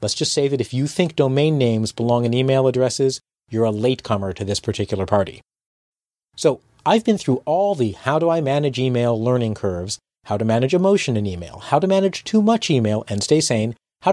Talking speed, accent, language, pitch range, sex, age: 190 wpm, American, English, 110-160 Hz, male, 40-59